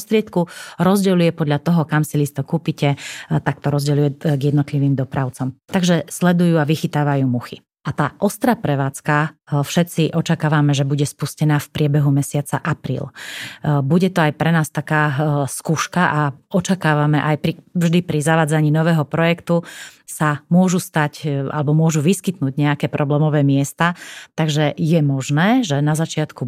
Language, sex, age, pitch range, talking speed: Slovak, female, 30-49, 145-165 Hz, 145 wpm